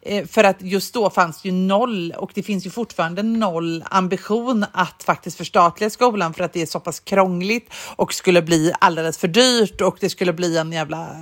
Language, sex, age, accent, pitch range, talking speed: Swedish, female, 40-59, native, 160-205 Hz, 200 wpm